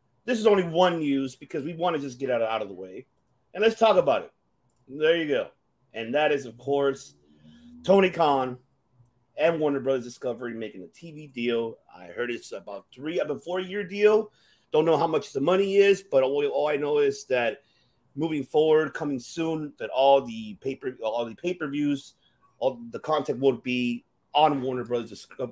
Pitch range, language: 125-185 Hz, English